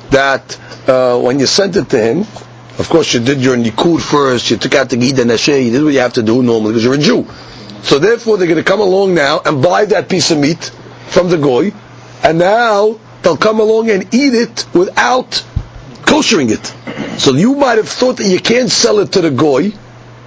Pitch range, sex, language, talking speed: 150-230 Hz, male, English, 215 wpm